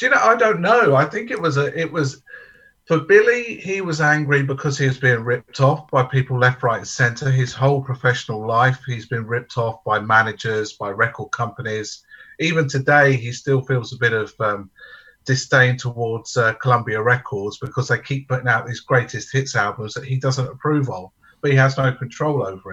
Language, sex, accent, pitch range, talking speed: English, male, British, 120-145 Hz, 205 wpm